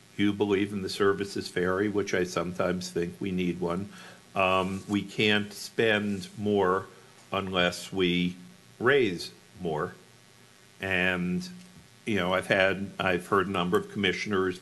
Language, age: English, 60-79